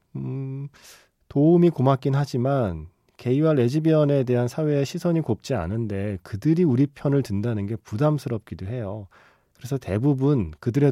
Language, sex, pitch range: Korean, male, 100-140 Hz